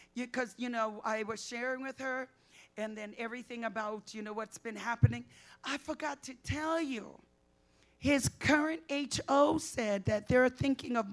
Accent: American